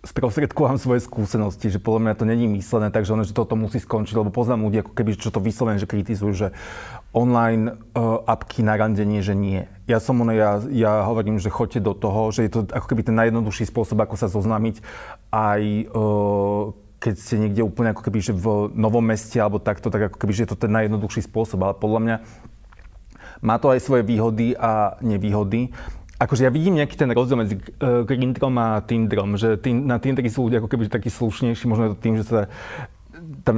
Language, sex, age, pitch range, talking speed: Slovak, male, 30-49, 105-120 Hz, 200 wpm